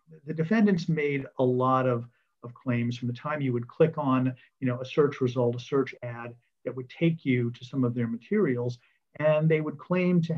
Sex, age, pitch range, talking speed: male, 50-69, 120-135 Hz, 215 wpm